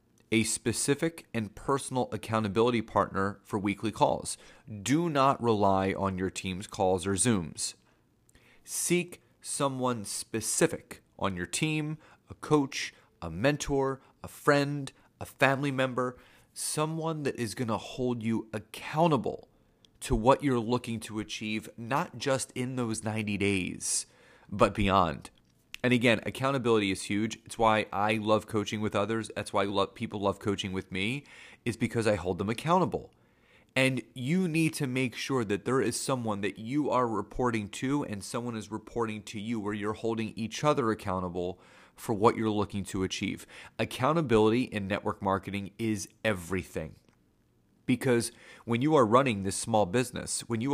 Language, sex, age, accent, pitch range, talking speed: English, male, 30-49, American, 100-130 Hz, 155 wpm